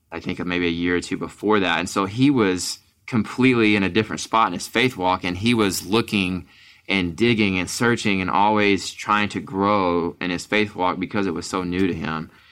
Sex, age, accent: male, 20-39, American